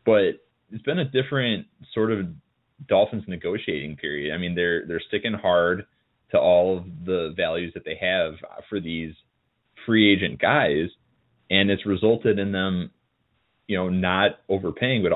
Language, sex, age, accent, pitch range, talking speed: English, male, 20-39, American, 85-105 Hz, 155 wpm